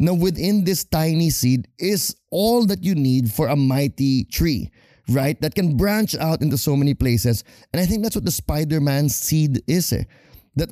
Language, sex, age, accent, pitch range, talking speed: English, male, 20-39, Filipino, 115-160 Hz, 195 wpm